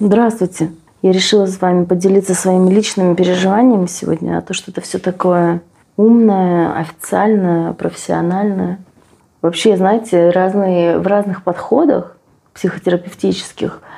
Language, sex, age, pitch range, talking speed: Russian, female, 30-49, 160-185 Hz, 115 wpm